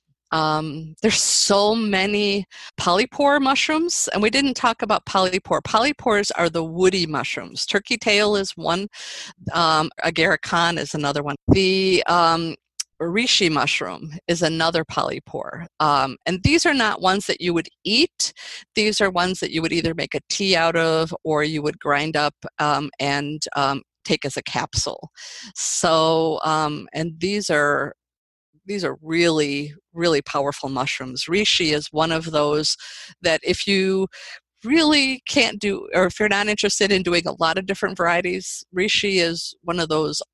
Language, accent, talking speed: English, American, 160 wpm